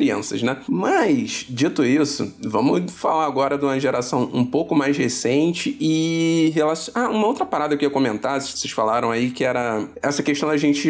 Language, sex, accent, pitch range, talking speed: Portuguese, male, Brazilian, 125-150 Hz, 175 wpm